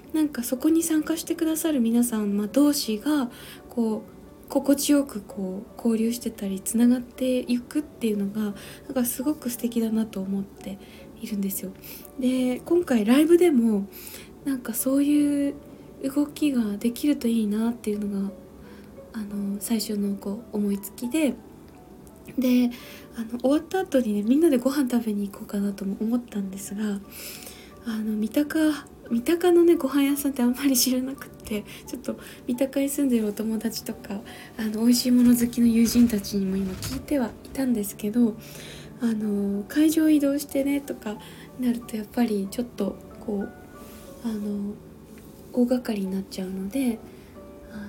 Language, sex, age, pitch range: Japanese, female, 20-39, 210-275 Hz